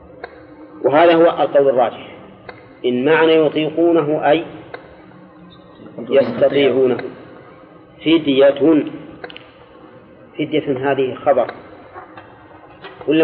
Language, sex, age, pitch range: Arabic, male, 40-59, 135-160 Hz